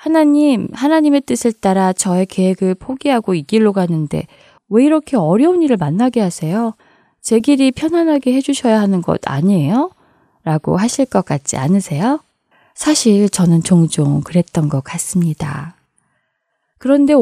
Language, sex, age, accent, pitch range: Korean, female, 20-39, native, 170-265 Hz